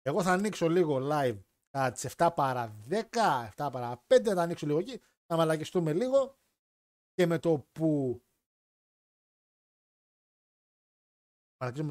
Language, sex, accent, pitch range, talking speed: Greek, male, native, 135-180 Hz, 125 wpm